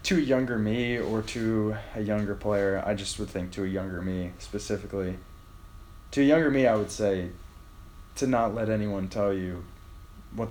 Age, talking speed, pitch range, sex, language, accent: 20-39, 185 wpm, 95-110 Hz, male, English, American